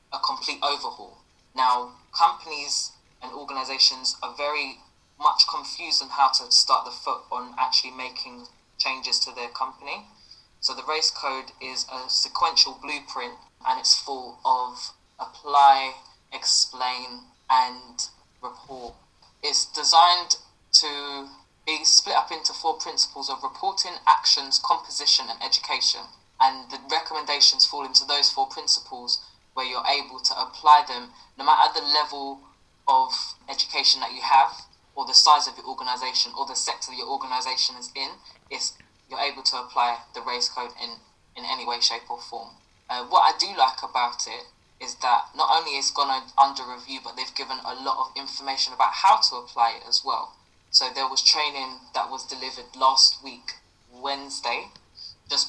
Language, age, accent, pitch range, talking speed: English, 10-29, British, 130-145 Hz, 160 wpm